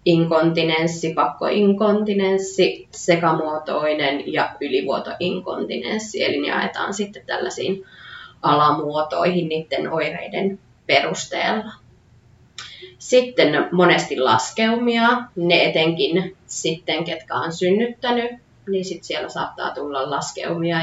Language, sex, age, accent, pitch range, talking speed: Finnish, female, 20-39, native, 160-210 Hz, 80 wpm